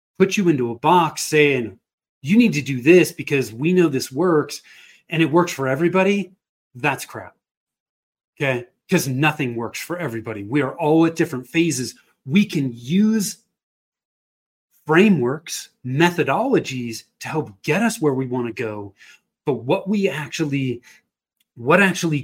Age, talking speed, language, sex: 30-49, 150 wpm, English, male